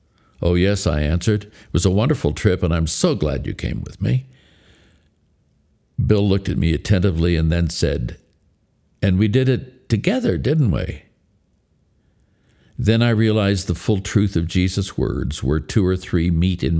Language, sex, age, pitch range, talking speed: English, male, 60-79, 85-105 Hz, 170 wpm